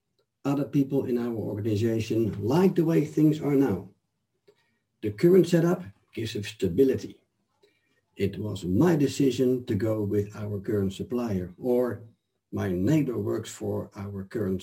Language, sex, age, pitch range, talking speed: English, male, 60-79, 105-150 Hz, 140 wpm